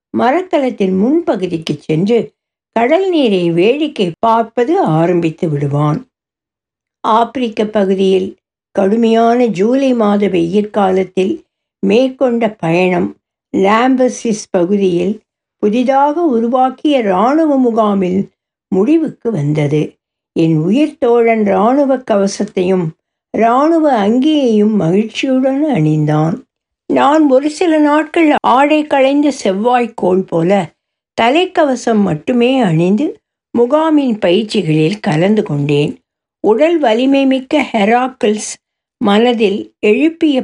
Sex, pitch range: female, 190-275 Hz